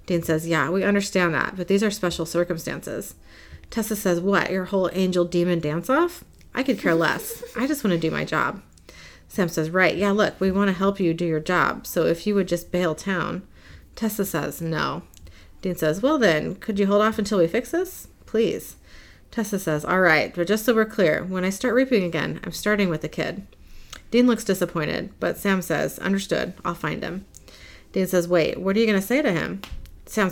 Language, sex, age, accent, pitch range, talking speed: English, female, 30-49, American, 165-210 Hz, 210 wpm